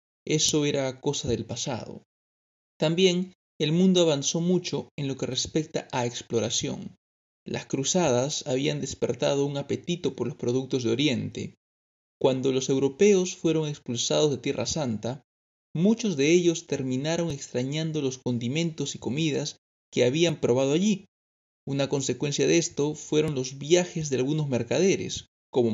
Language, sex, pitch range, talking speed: Spanish, male, 125-160 Hz, 140 wpm